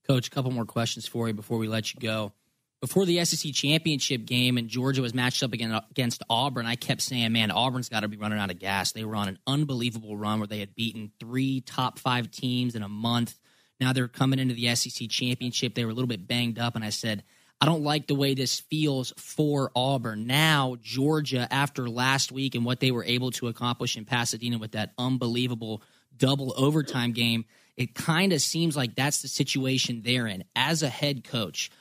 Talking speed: 215 wpm